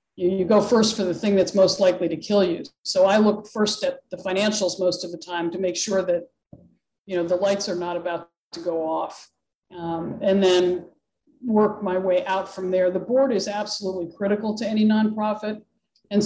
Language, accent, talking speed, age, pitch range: English, American, 205 wpm, 50-69, 180-205 Hz